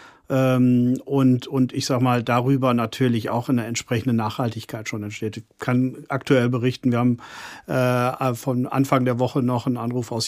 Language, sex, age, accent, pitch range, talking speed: German, male, 40-59, German, 125-140 Hz, 165 wpm